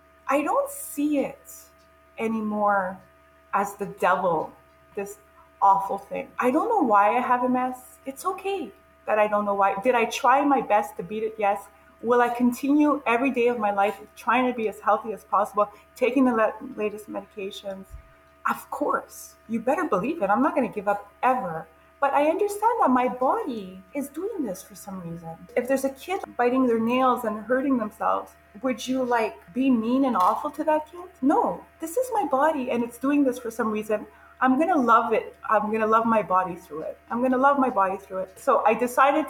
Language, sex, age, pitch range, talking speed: English, female, 30-49, 205-275 Hz, 205 wpm